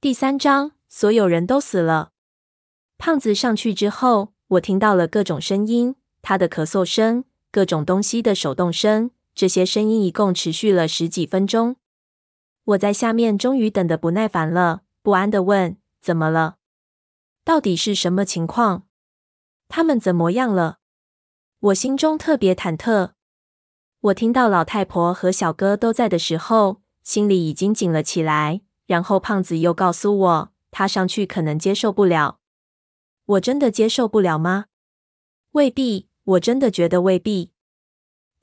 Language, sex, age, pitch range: Chinese, female, 20-39, 170-215 Hz